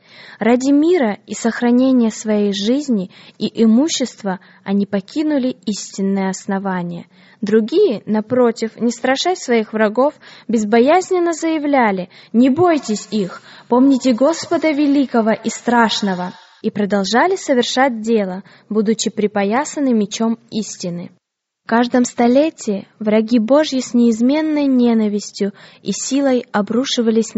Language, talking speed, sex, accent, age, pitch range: Russian, 105 wpm, female, native, 10-29, 205-255 Hz